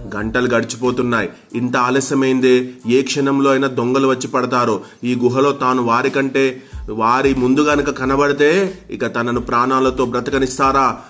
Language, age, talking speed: Telugu, 30-49, 125 wpm